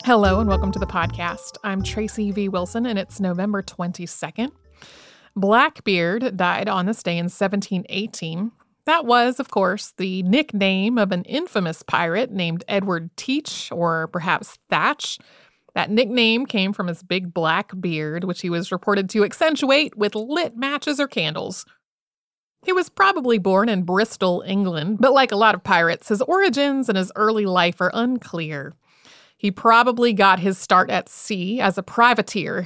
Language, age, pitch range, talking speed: English, 30-49, 180-230 Hz, 160 wpm